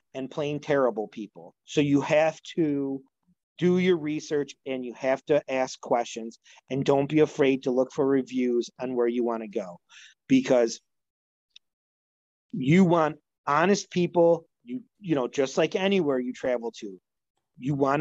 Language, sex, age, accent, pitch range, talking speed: English, male, 30-49, American, 130-155 Hz, 155 wpm